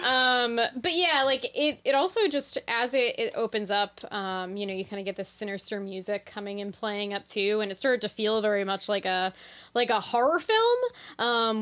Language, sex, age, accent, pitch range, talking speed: English, female, 10-29, American, 195-245 Hz, 215 wpm